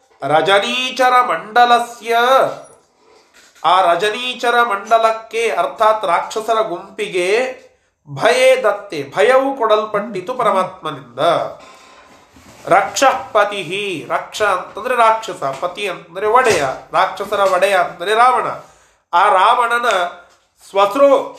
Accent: native